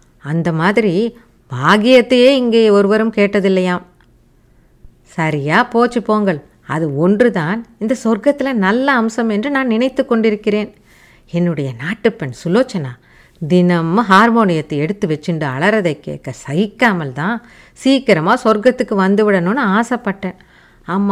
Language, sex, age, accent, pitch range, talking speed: Tamil, female, 50-69, native, 170-235 Hz, 100 wpm